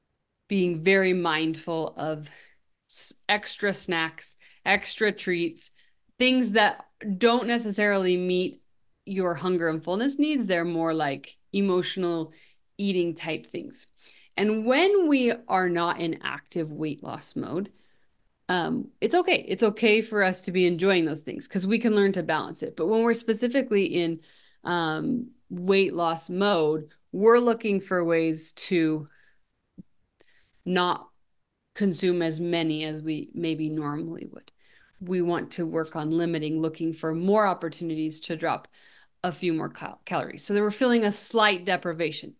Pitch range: 165-220 Hz